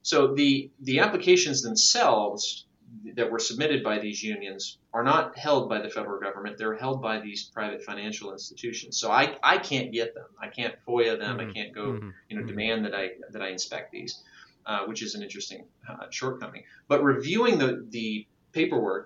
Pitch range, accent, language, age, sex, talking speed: 110-150 Hz, American, English, 30-49, male, 185 wpm